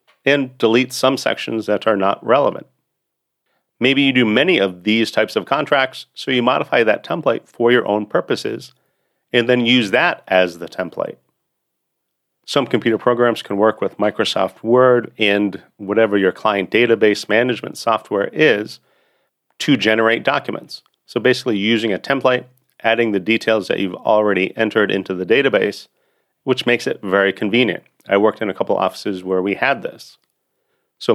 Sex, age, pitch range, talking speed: male, 40-59, 100-120 Hz, 160 wpm